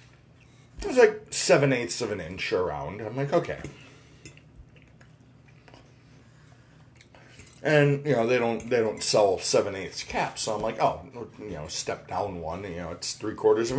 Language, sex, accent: English, male, American